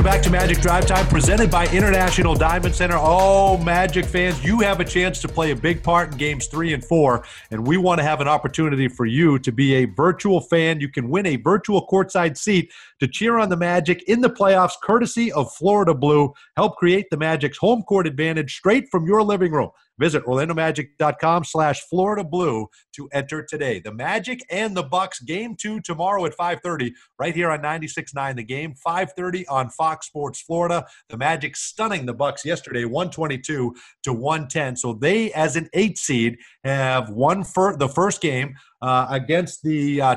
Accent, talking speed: American, 190 wpm